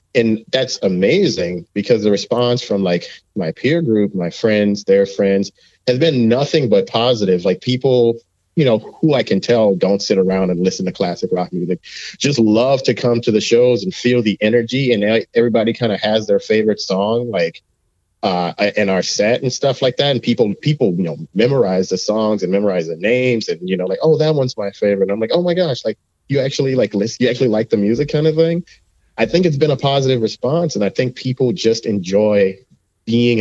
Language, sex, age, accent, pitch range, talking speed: English, male, 30-49, American, 95-125 Hz, 210 wpm